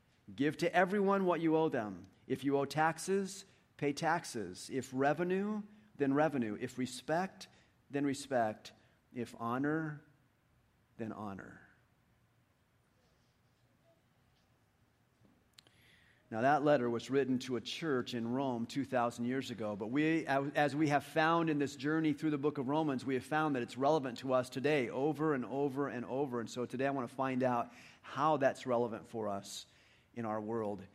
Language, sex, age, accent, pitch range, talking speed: English, male, 40-59, American, 125-165 Hz, 160 wpm